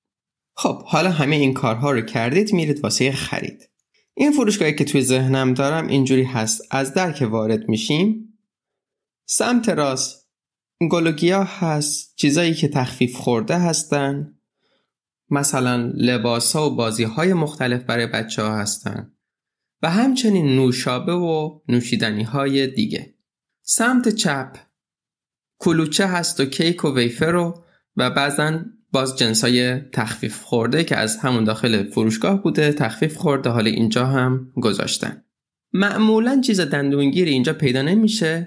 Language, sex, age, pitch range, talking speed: Persian, male, 20-39, 125-170 Hz, 125 wpm